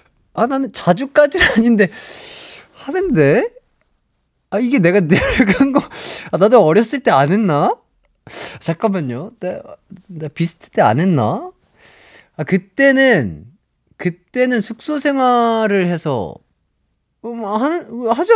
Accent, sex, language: native, male, Korean